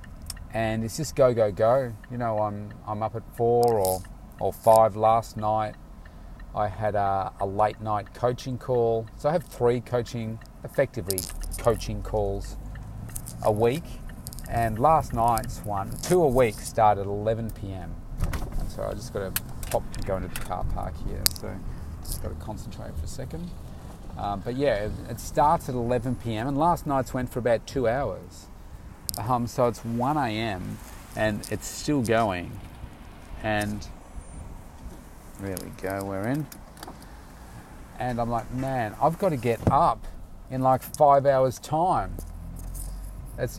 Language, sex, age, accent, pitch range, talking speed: English, male, 30-49, Australian, 95-120 Hz, 160 wpm